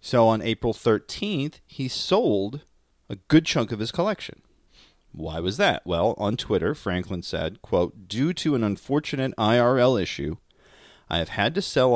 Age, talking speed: 30-49, 155 wpm